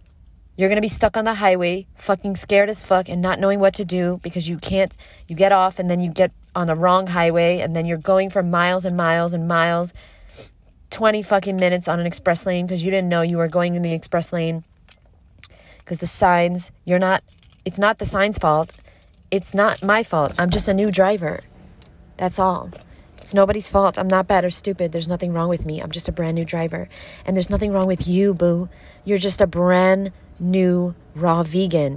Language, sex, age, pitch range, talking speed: English, female, 20-39, 170-195 Hz, 215 wpm